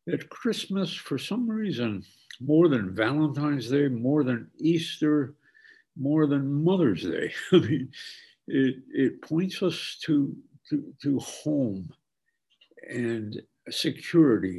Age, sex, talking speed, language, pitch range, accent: 60-79, male, 115 wpm, English, 110-150 Hz, American